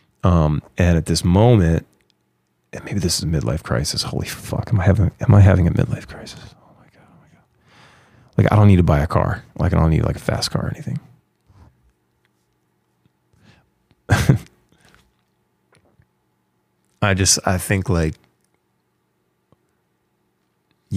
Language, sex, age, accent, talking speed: English, male, 30-49, American, 150 wpm